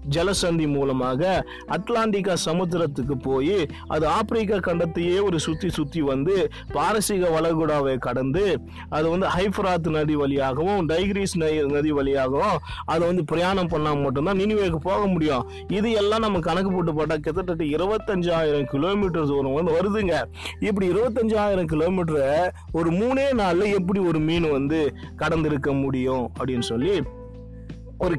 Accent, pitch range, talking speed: native, 145-195 Hz, 125 wpm